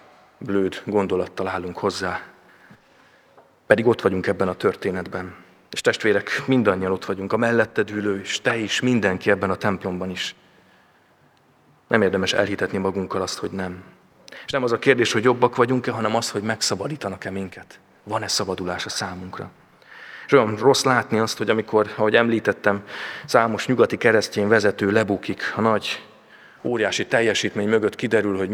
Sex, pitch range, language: male, 95-110 Hz, Hungarian